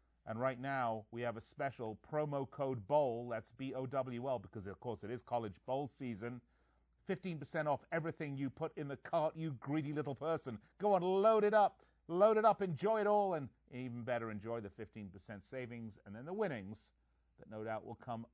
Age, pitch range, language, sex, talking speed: 40-59, 100-150 Hz, English, male, 195 wpm